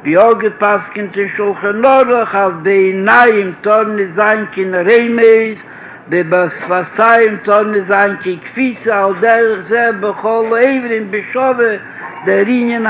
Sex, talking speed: male, 100 wpm